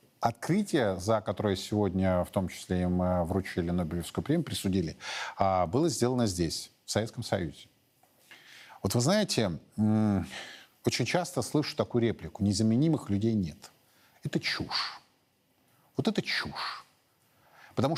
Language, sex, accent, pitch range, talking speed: Russian, male, native, 100-145 Hz, 115 wpm